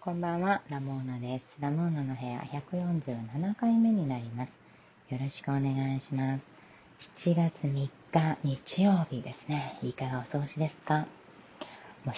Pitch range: 125-170 Hz